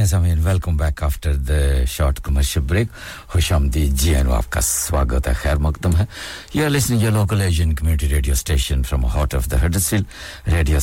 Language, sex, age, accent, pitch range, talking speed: English, male, 60-79, Indian, 75-90 Hz, 140 wpm